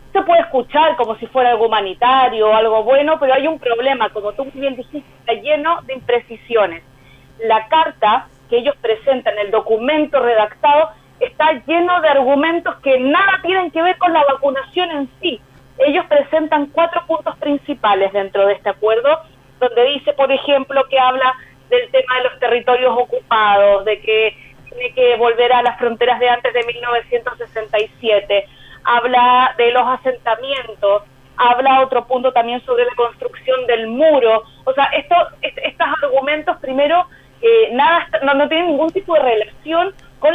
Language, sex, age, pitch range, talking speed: Spanish, female, 30-49, 235-310 Hz, 160 wpm